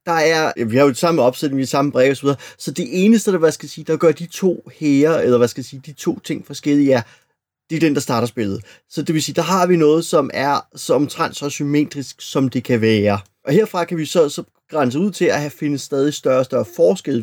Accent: native